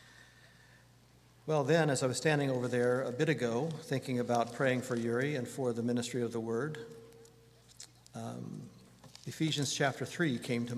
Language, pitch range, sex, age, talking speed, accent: English, 125-145 Hz, male, 50-69, 160 wpm, American